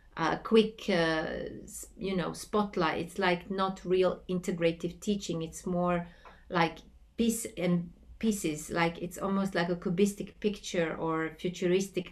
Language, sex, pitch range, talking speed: English, female, 170-200 Hz, 140 wpm